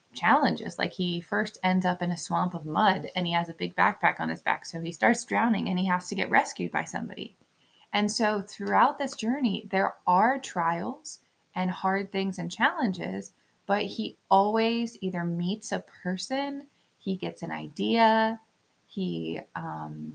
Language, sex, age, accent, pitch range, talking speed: English, female, 20-39, American, 170-205 Hz, 175 wpm